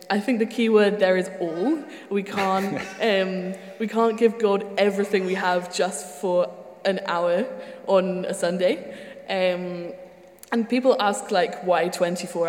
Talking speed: 155 wpm